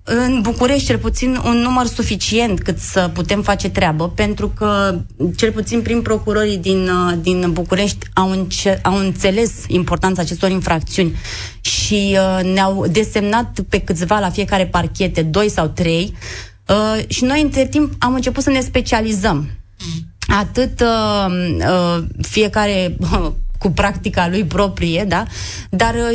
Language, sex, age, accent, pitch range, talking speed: Romanian, female, 20-39, native, 170-220 Hz, 140 wpm